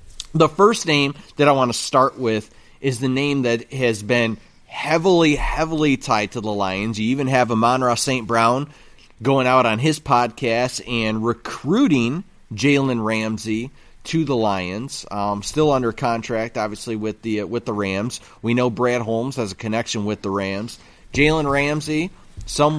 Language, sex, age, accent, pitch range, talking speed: English, male, 30-49, American, 110-140 Hz, 170 wpm